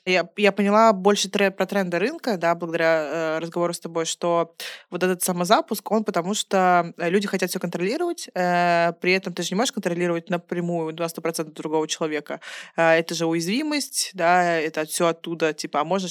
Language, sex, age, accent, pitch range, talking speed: Russian, female, 20-39, native, 170-195 Hz, 175 wpm